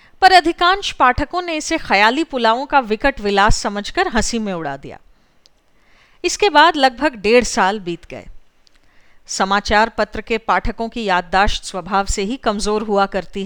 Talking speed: 150 wpm